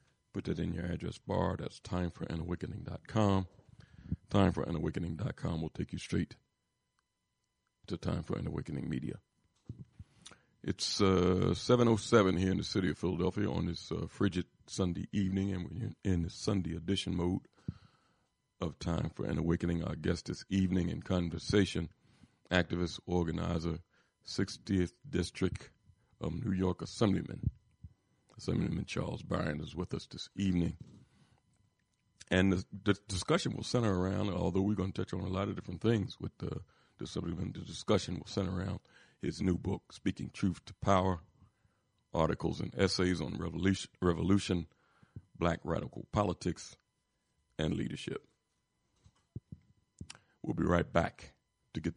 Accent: American